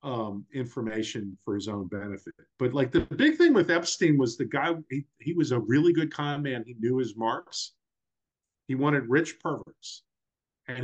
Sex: male